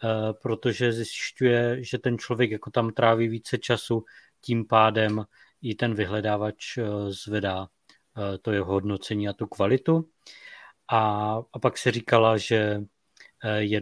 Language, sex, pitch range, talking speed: Czech, male, 105-130 Hz, 125 wpm